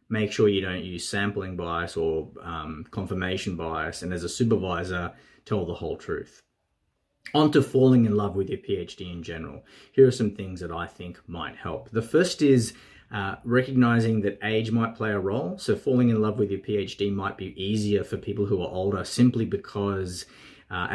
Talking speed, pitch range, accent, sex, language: 190 wpm, 90-115 Hz, Australian, male, English